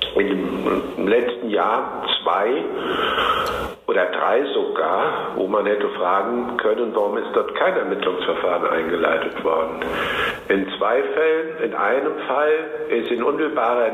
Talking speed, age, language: 125 wpm, 60-79, German